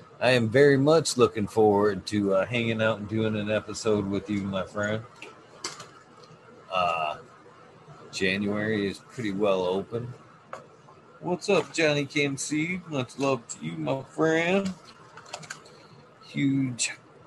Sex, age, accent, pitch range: male, 40-59, American, 100-145 Hz